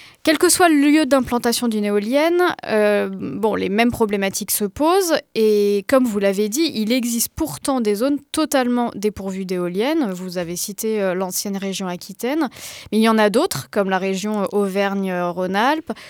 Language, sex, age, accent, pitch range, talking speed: French, female, 20-39, French, 200-270 Hz, 170 wpm